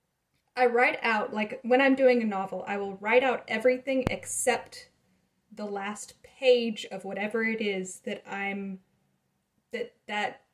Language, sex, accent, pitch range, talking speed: English, female, American, 185-240 Hz, 150 wpm